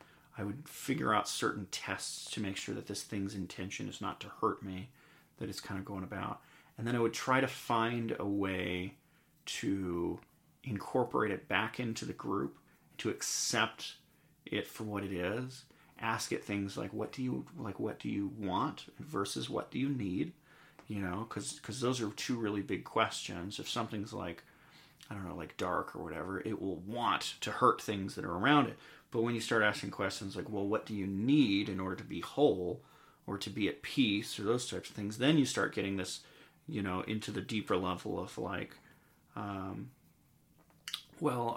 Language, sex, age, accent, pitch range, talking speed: English, male, 30-49, American, 95-115 Hz, 195 wpm